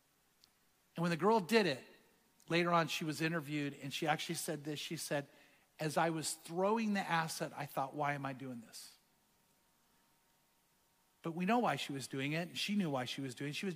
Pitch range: 160-230 Hz